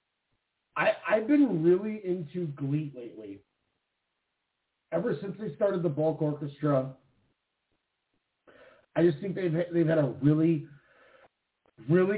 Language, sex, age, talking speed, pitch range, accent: English, male, 40-59, 115 wpm, 145-175 Hz, American